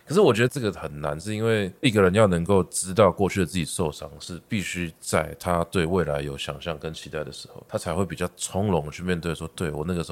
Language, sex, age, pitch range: Chinese, male, 20-39, 80-100 Hz